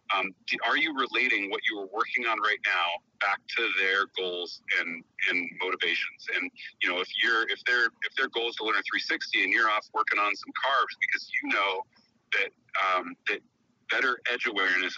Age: 40-59